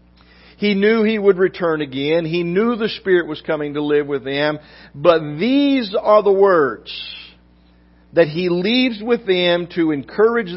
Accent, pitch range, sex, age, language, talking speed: American, 150-200 Hz, male, 50-69, English, 160 wpm